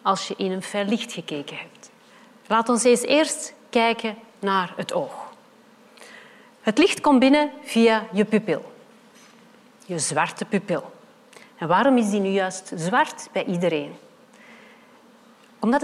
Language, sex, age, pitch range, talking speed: Dutch, female, 40-59, 195-260 Hz, 135 wpm